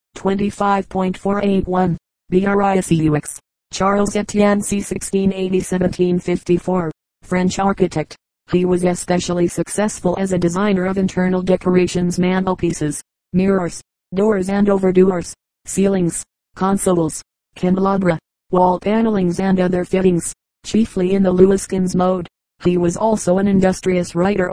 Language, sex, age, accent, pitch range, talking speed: English, female, 30-49, American, 180-195 Hz, 105 wpm